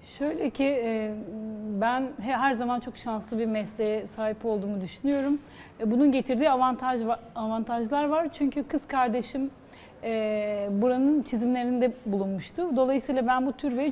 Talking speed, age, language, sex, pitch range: 120 wpm, 40-59, Turkish, female, 230-280 Hz